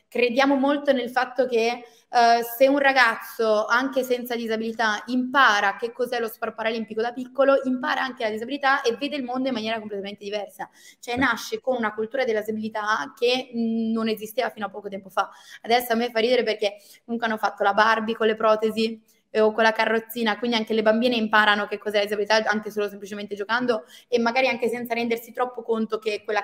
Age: 20-39